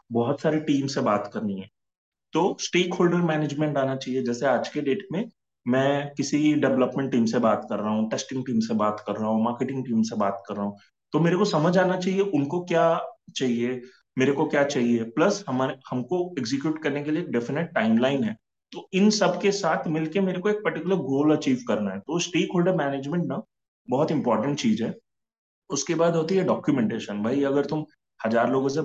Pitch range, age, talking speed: 125-165 Hz, 30-49, 190 wpm